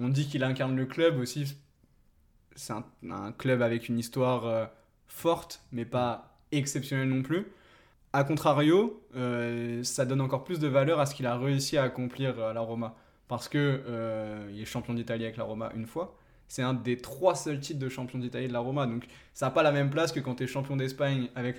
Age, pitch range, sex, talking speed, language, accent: 20-39, 125-155 Hz, male, 215 wpm, French, French